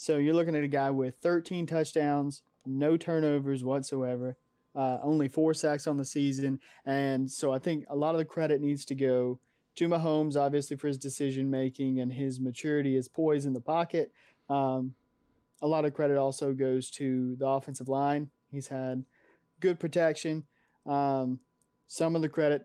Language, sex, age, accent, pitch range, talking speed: English, male, 20-39, American, 135-155 Hz, 170 wpm